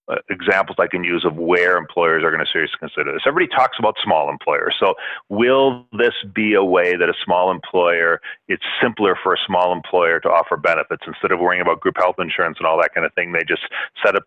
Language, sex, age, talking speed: English, male, 40-59, 225 wpm